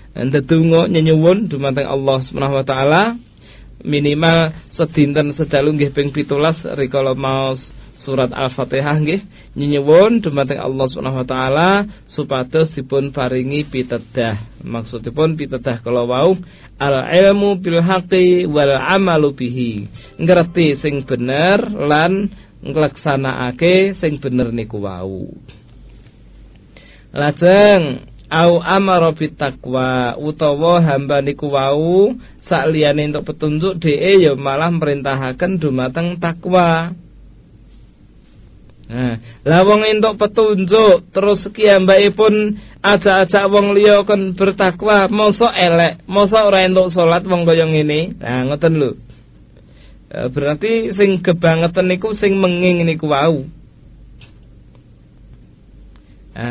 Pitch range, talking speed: 135-185 Hz, 95 wpm